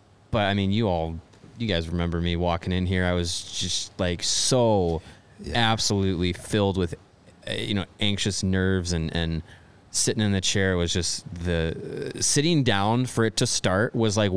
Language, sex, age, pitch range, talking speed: English, male, 20-39, 90-110 Hz, 170 wpm